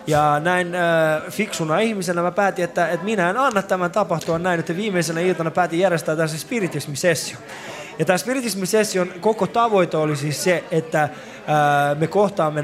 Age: 20-39